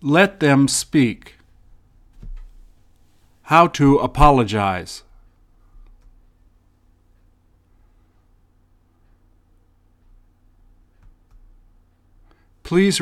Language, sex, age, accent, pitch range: English, male, 50-69, American, 85-105 Hz